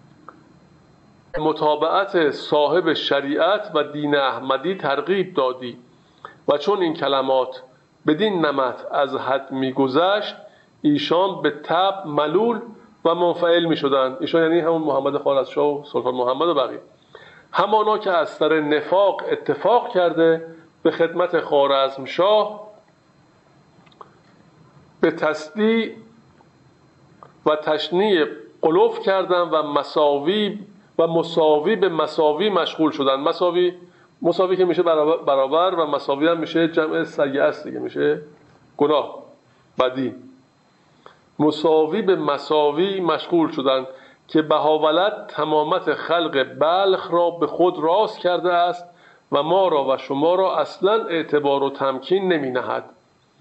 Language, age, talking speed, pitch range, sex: Persian, 50-69, 115 wpm, 145-175 Hz, male